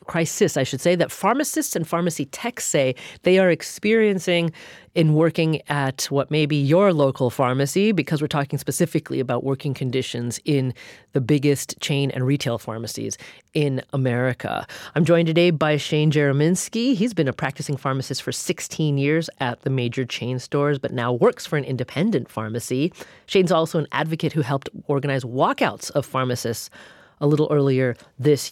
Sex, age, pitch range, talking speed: female, 30-49, 130-170 Hz, 165 wpm